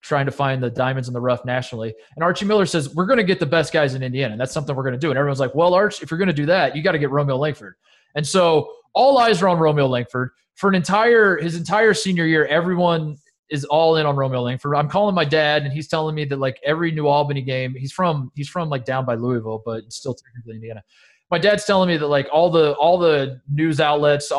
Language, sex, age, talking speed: English, male, 20-39, 250 wpm